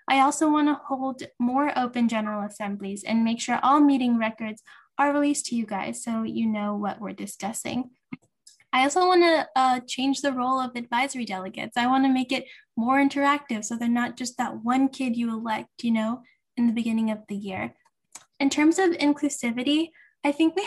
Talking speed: 185 wpm